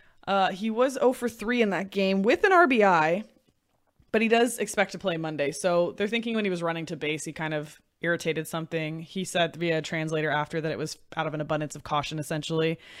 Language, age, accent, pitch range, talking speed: English, 20-39, American, 165-200 Hz, 210 wpm